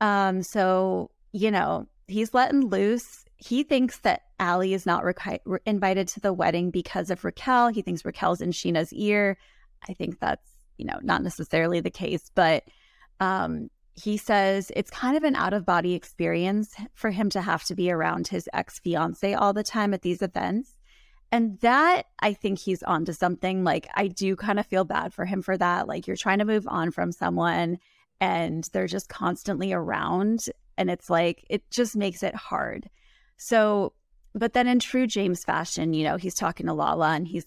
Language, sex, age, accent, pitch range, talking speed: English, female, 20-39, American, 175-215 Hz, 185 wpm